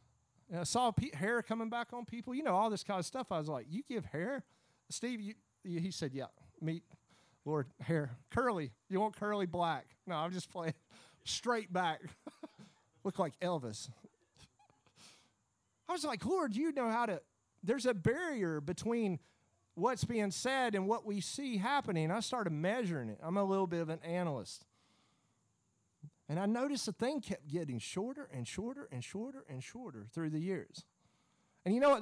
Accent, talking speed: American, 180 wpm